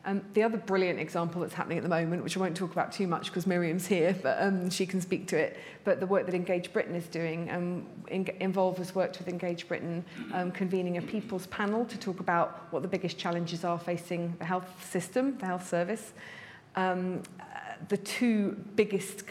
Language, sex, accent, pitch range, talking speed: English, female, British, 170-190 Hz, 200 wpm